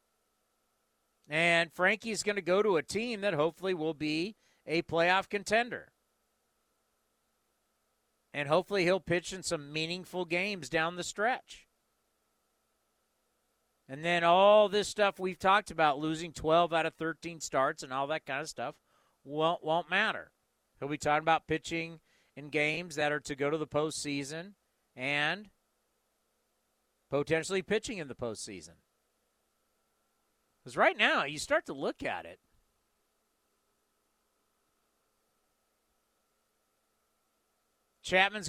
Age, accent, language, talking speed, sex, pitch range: 50-69, American, English, 125 wpm, male, 145-185 Hz